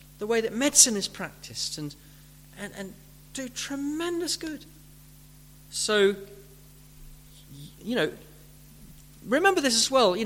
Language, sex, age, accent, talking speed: English, male, 40-59, British, 115 wpm